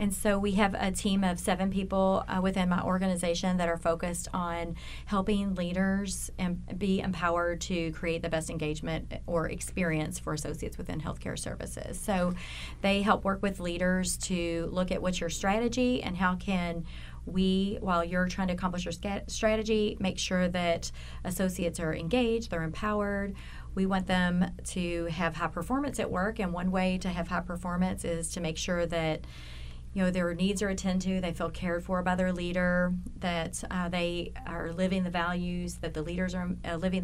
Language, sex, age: English, female, 30-49